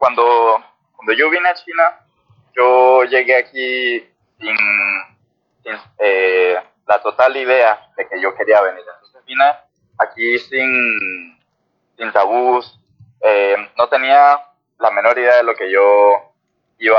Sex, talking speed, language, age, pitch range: male, 130 wpm, Spanish, 20-39, 110-160 Hz